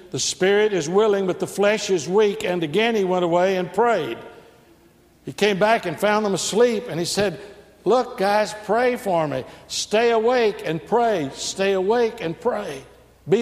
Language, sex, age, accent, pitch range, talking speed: English, male, 60-79, American, 160-215 Hz, 180 wpm